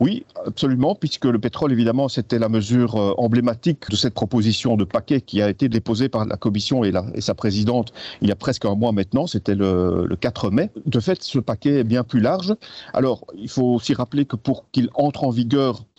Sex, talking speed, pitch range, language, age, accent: male, 220 wpm, 110-135 Hz, French, 50-69, French